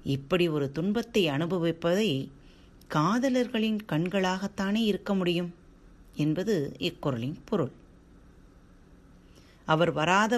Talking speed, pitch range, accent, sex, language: 75 wpm, 135-205 Hz, native, female, Tamil